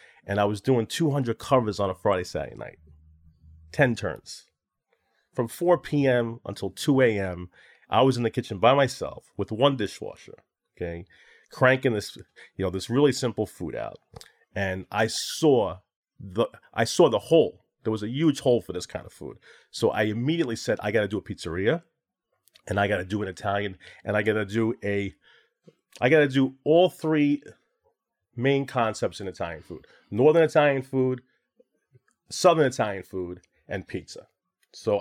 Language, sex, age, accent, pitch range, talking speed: English, male, 30-49, American, 105-140 Hz, 170 wpm